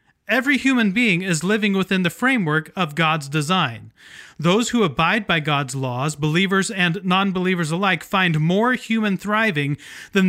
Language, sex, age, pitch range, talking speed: English, male, 30-49, 155-200 Hz, 150 wpm